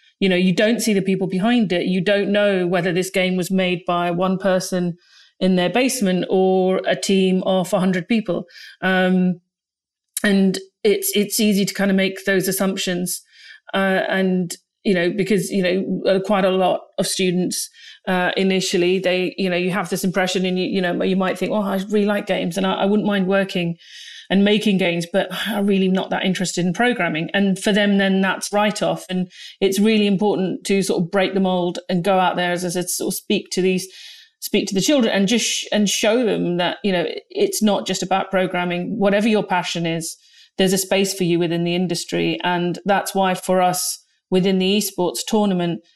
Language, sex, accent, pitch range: English, female, British, 180-200 Hz